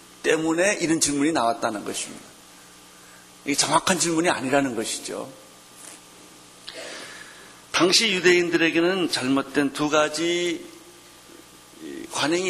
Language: Korean